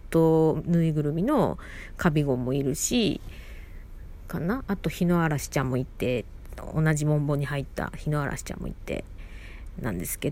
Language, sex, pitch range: Japanese, female, 140-210 Hz